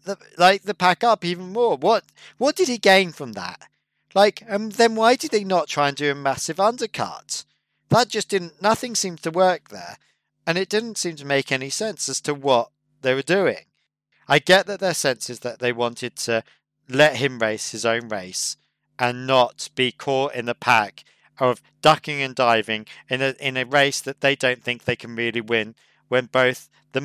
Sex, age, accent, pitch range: male, 40-59, British, 125-165 Hz